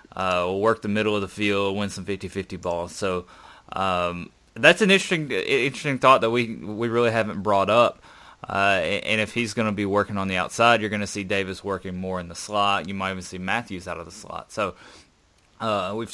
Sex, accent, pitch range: male, American, 95-110 Hz